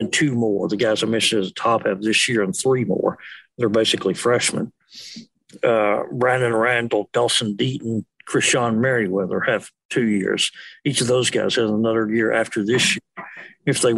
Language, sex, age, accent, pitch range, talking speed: English, male, 60-79, American, 115-140 Hz, 175 wpm